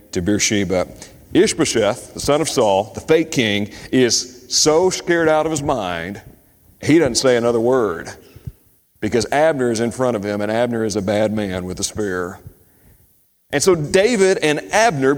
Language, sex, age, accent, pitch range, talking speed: English, male, 40-59, American, 105-150 Hz, 170 wpm